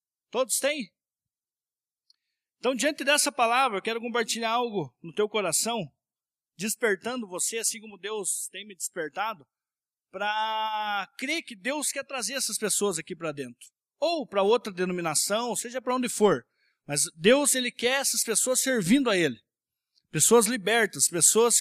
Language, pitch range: Portuguese, 190-255 Hz